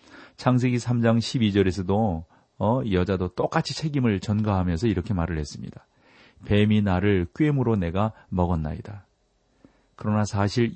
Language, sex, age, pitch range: Korean, male, 40-59, 90-120 Hz